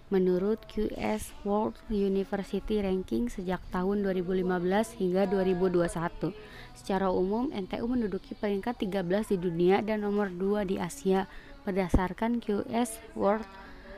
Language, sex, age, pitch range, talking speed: Indonesian, female, 20-39, 185-210 Hz, 110 wpm